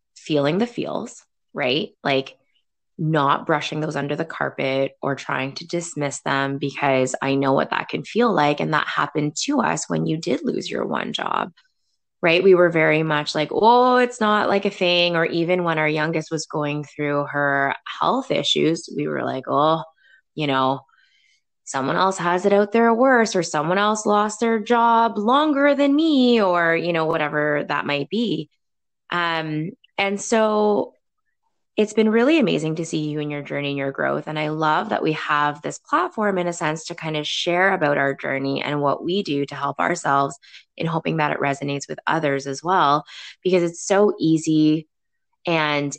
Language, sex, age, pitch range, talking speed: English, female, 20-39, 145-200 Hz, 185 wpm